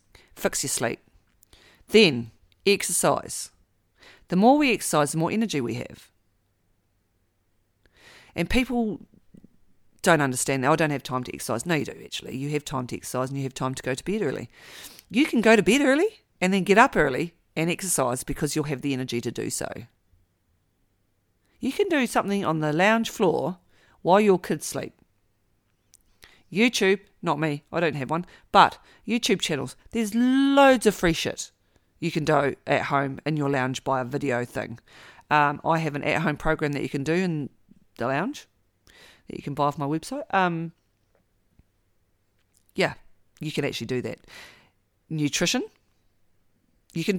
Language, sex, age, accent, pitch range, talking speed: English, female, 40-59, Australian, 115-195 Hz, 170 wpm